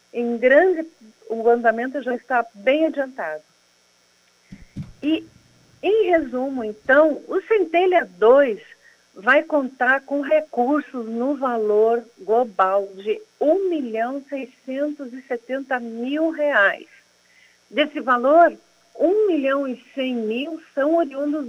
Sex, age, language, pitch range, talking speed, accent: female, 50-69, Portuguese, 235-300 Hz, 85 wpm, Brazilian